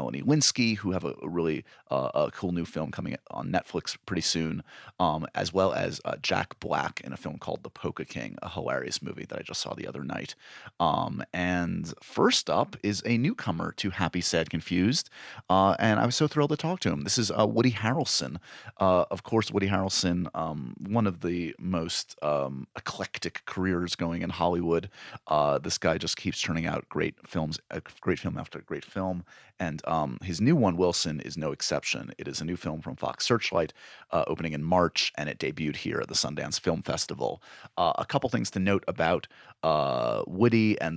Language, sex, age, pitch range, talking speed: English, male, 30-49, 85-105 Hz, 200 wpm